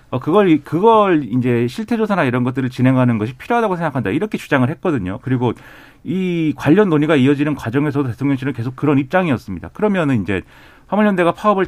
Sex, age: male, 40-59